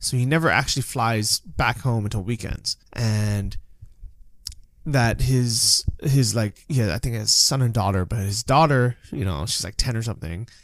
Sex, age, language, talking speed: male, 20-39, English, 175 wpm